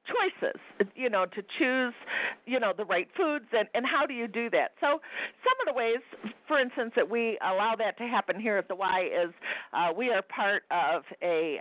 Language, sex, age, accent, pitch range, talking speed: English, female, 50-69, American, 195-290 Hz, 210 wpm